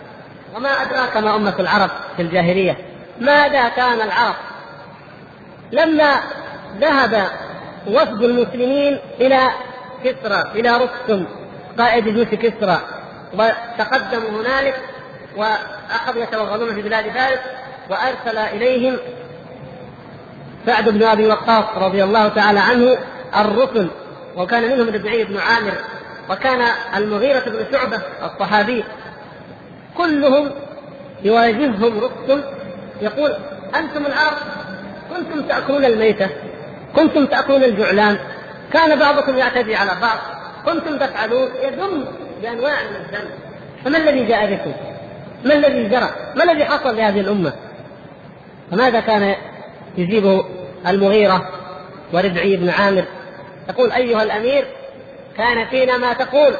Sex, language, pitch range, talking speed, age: female, Arabic, 205-270 Hz, 105 wpm, 40-59